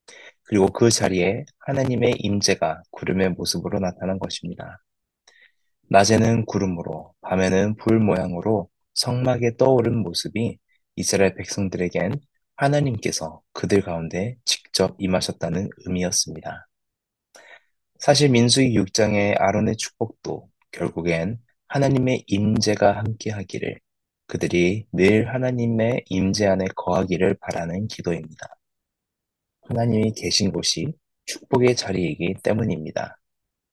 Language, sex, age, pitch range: Korean, male, 20-39, 90-115 Hz